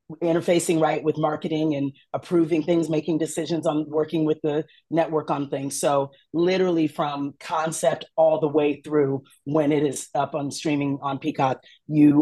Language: English